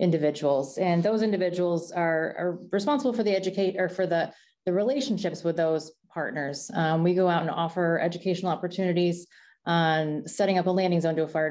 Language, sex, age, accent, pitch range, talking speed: English, female, 20-39, American, 160-185 Hz, 180 wpm